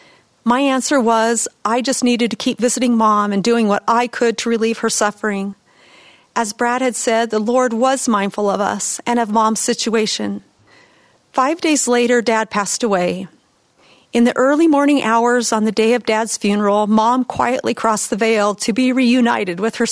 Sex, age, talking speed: female, 40-59, 180 wpm